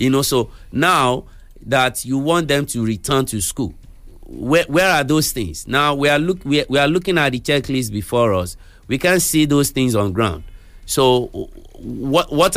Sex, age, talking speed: male, 50-69, 195 wpm